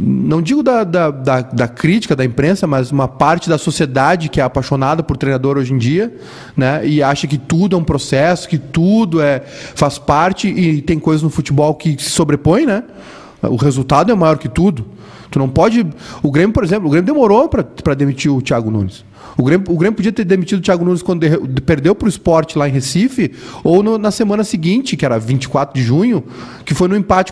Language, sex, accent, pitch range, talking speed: Portuguese, male, Brazilian, 135-185 Hz, 215 wpm